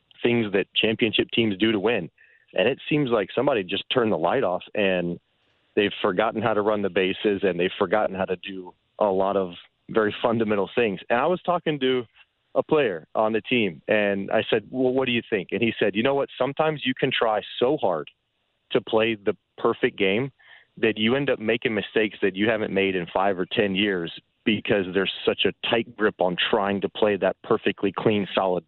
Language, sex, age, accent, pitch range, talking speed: English, male, 30-49, American, 100-120 Hz, 210 wpm